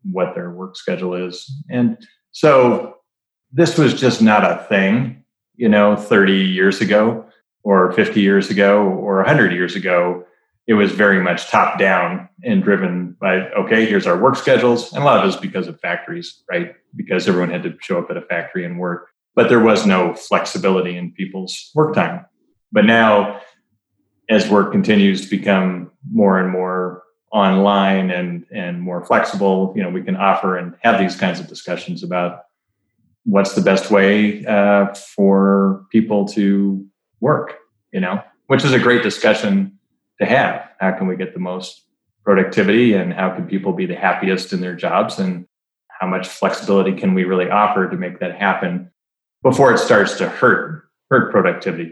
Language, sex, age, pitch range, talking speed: English, male, 30-49, 90-110 Hz, 175 wpm